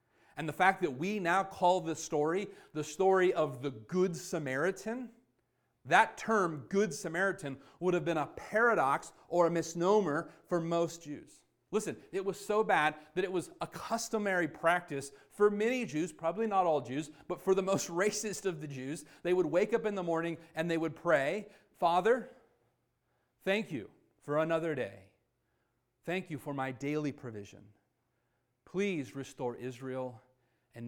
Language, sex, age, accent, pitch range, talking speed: English, male, 40-59, American, 125-180 Hz, 160 wpm